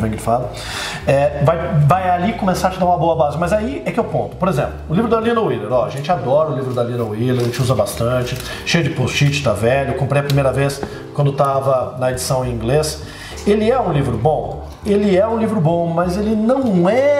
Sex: male